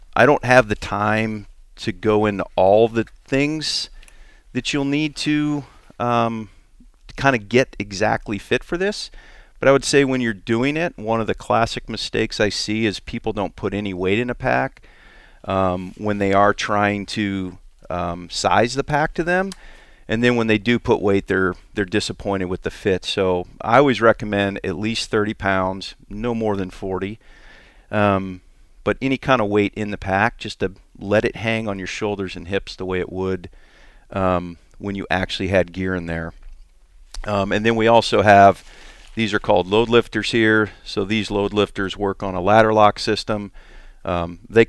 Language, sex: English, male